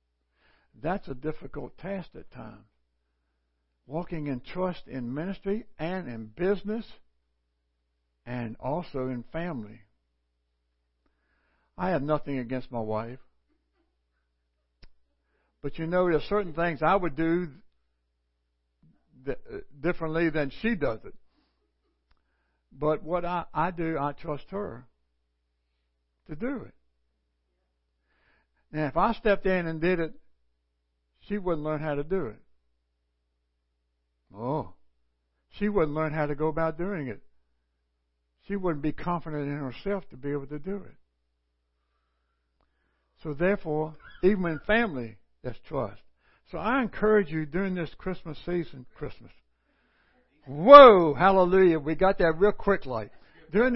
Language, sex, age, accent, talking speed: English, male, 60-79, American, 125 wpm